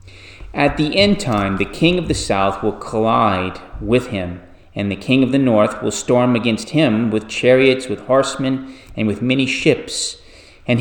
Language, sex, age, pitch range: English, male, 30-49, 100-125 Hz